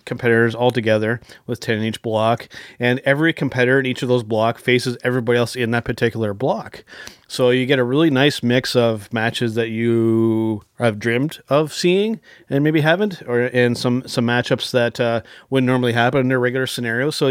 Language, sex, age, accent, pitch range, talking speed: English, male, 30-49, American, 115-135 Hz, 195 wpm